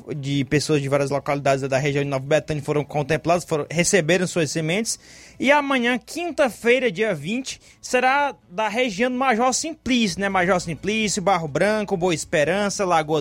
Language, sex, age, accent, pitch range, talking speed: Portuguese, male, 20-39, Brazilian, 175-235 Hz, 155 wpm